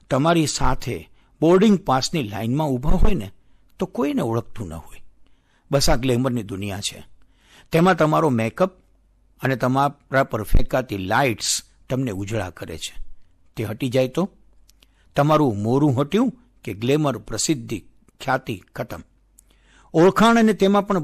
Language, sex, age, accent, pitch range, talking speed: Gujarati, male, 60-79, native, 115-180 Hz, 90 wpm